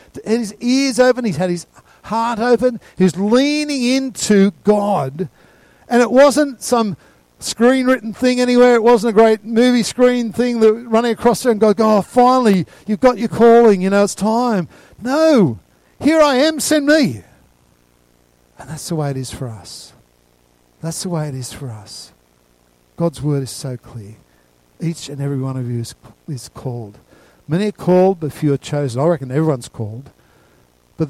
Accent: Australian